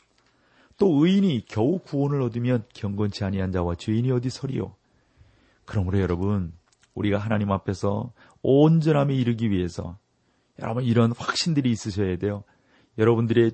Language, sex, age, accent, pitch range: Korean, male, 40-59, native, 105-125 Hz